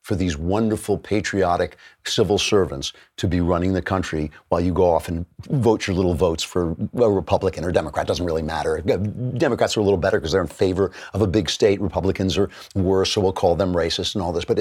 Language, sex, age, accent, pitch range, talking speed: English, male, 50-69, American, 90-105 Hz, 220 wpm